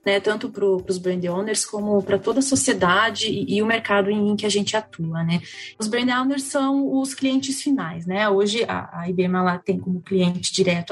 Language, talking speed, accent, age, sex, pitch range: Portuguese, 210 wpm, Brazilian, 20-39, female, 190-250 Hz